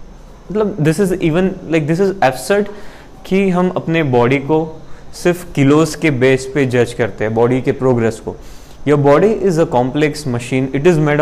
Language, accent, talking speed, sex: Hindi, native, 180 wpm, male